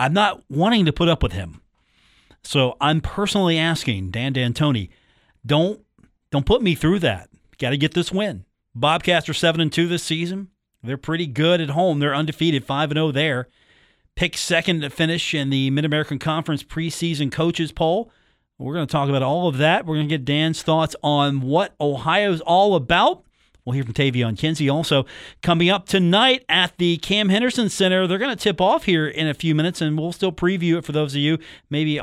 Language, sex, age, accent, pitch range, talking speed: English, male, 40-59, American, 135-175 Hz, 200 wpm